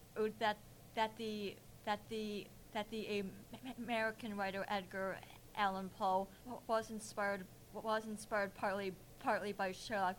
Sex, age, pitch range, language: female, 20-39, 195-220 Hz, English